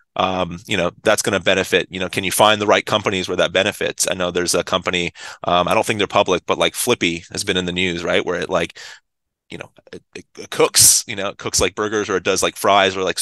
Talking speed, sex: 270 wpm, male